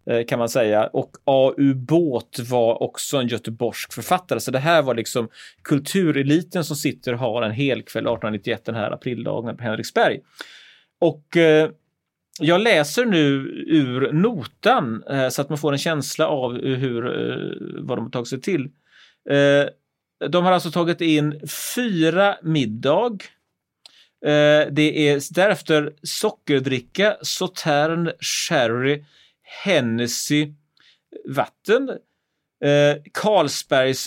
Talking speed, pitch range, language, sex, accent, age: 125 wpm, 135-170 Hz, Swedish, male, native, 30-49